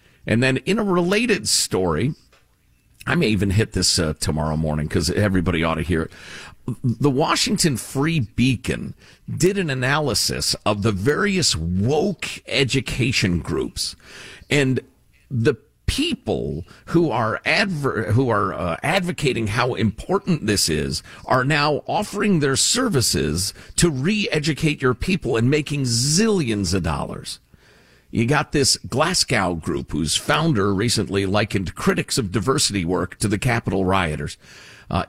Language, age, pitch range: English, 50-69, 105-160 Hz